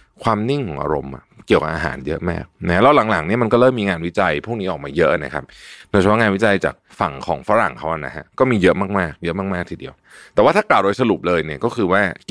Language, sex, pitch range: Thai, male, 85-115 Hz